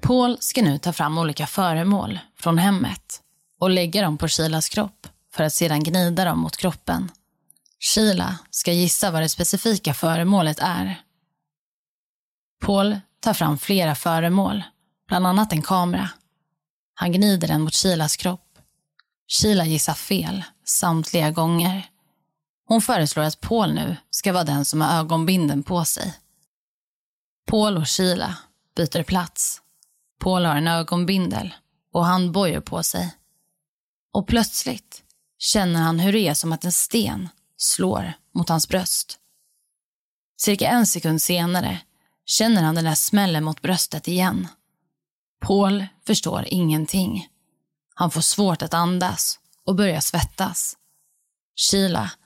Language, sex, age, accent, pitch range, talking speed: Swedish, female, 20-39, native, 160-195 Hz, 135 wpm